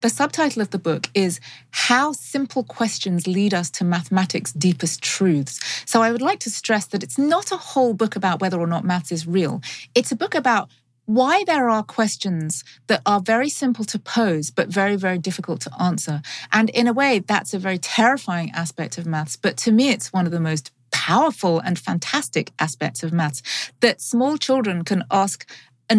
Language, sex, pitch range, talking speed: English, female, 175-245 Hz, 195 wpm